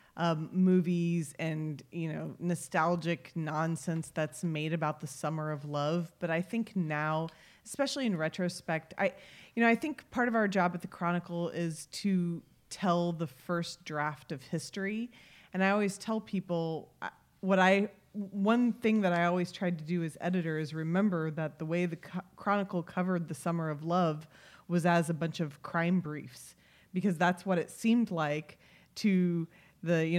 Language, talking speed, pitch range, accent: English, 170 wpm, 165-200 Hz, American